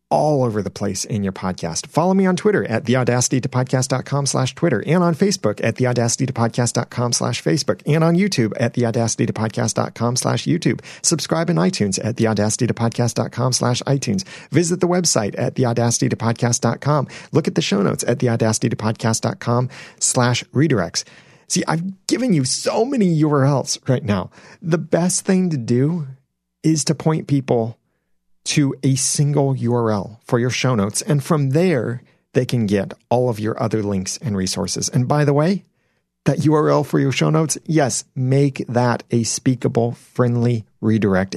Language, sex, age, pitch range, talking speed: English, male, 40-59, 105-145 Hz, 170 wpm